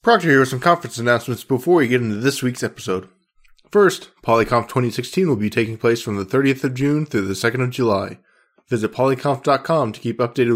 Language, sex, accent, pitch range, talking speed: English, male, American, 110-135 Hz, 200 wpm